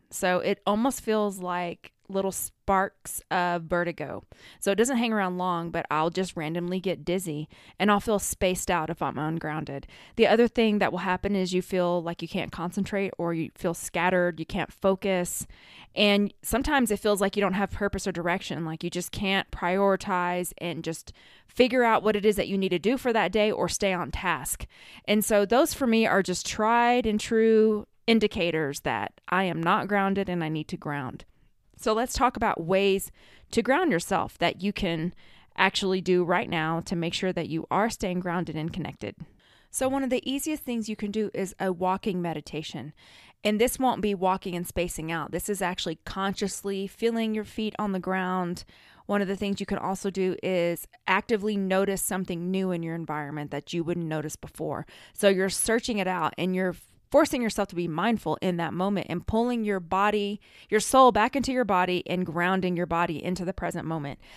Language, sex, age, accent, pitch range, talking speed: English, female, 20-39, American, 175-215 Hz, 200 wpm